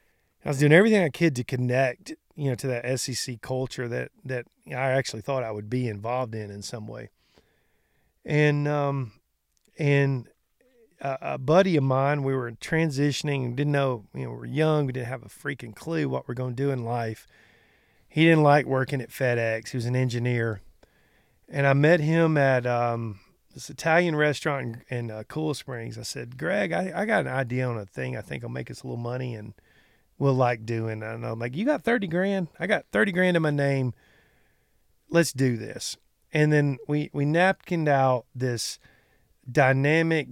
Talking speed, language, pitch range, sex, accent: 195 wpm, English, 120-145 Hz, male, American